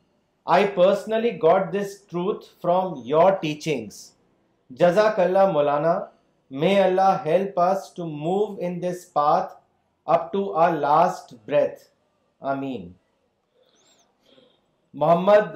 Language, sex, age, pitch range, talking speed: Urdu, male, 40-59, 155-195 Hz, 95 wpm